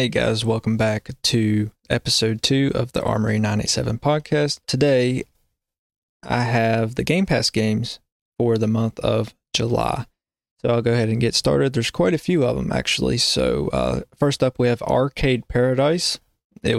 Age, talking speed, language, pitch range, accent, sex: 20-39, 170 wpm, English, 115-135 Hz, American, male